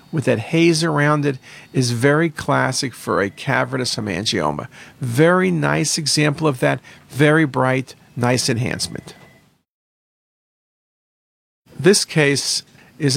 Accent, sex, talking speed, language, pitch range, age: American, male, 110 wpm, English, 120-165 Hz, 50-69